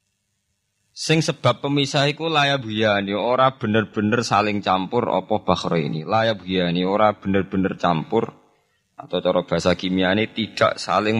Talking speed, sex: 130 wpm, male